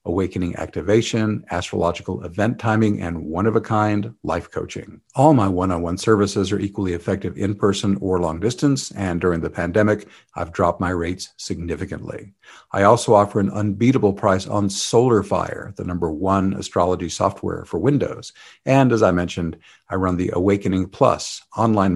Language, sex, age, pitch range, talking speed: English, male, 50-69, 90-105 Hz, 150 wpm